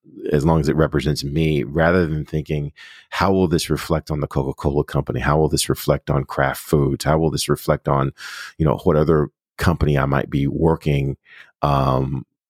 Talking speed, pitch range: 185 wpm, 70-85 Hz